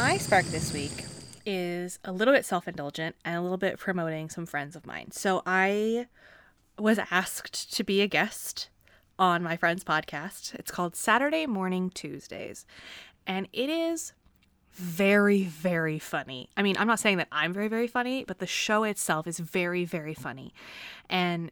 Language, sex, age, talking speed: English, female, 20-39, 165 wpm